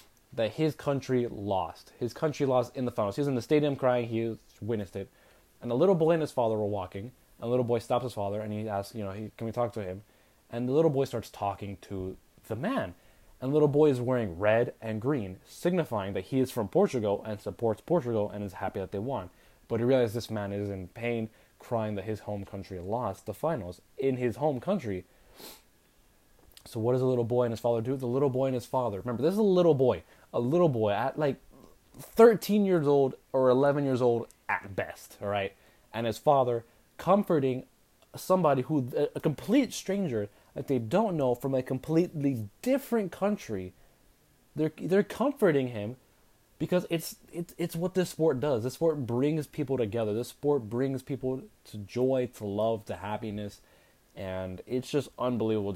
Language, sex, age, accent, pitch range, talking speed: English, male, 20-39, American, 105-145 Hz, 200 wpm